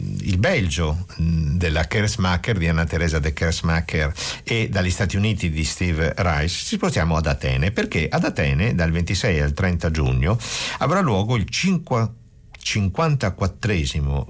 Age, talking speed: 60-79, 135 wpm